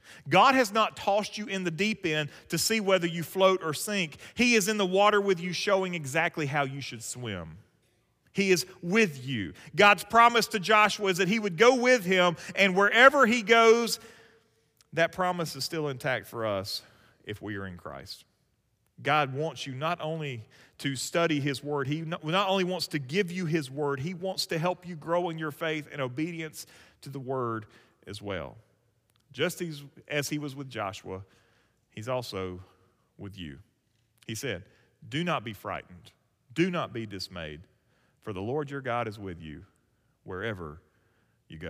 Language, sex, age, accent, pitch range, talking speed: English, male, 40-59, American, 110-175 Hz, 180 wpm